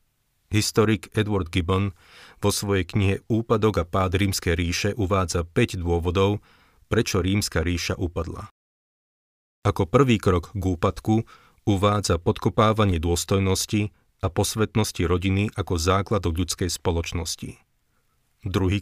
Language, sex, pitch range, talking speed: Slovak, male, 90-105 Hz, 110 wpm